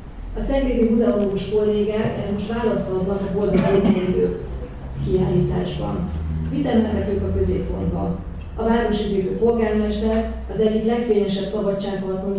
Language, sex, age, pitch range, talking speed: Hungarian, female, 30-49, 180-220 Hz, 110 wpm